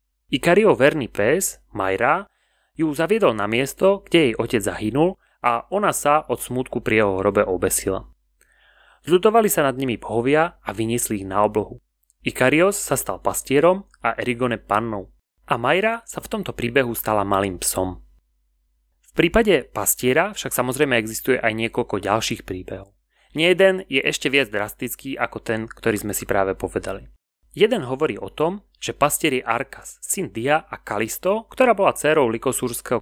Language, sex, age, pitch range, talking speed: Slovak, male, 30-49, 105-150 Hz, 155 wpm